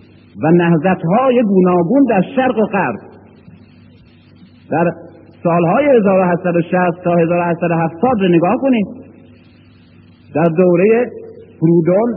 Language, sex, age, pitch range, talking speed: Persian, male, 50-69, 165-225 Hz, 90 wpm